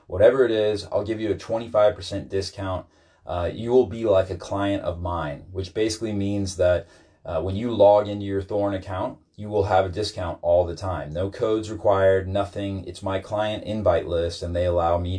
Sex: male